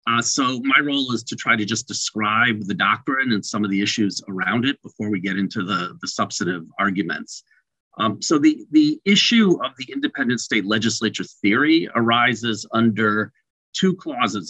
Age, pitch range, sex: 40-59, 105-140 Hz, male